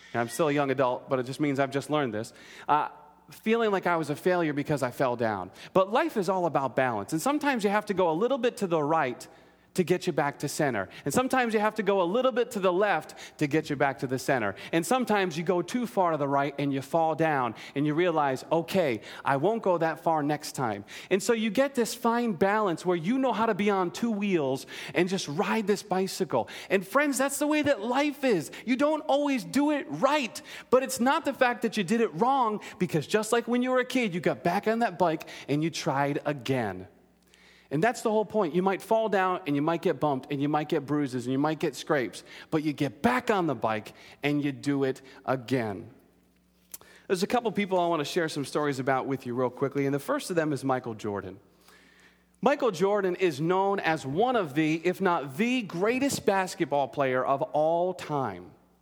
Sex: male